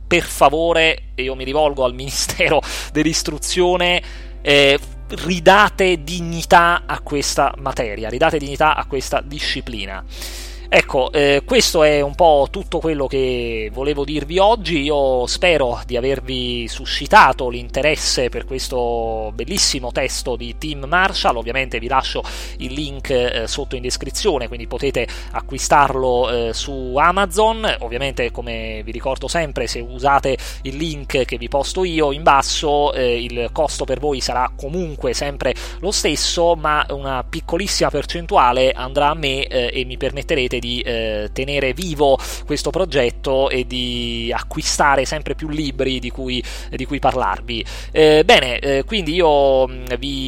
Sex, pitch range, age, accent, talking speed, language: male, 125-155 Hz, 30-49, native, 140 wpm, Italian